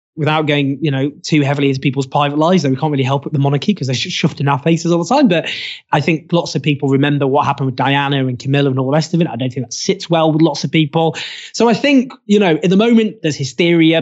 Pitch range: 135-165 Hz